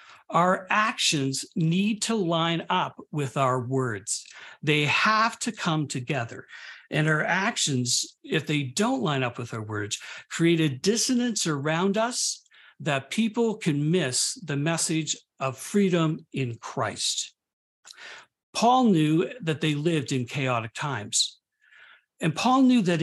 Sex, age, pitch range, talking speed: male, 60-79, 130-195 Hz, 135 wpm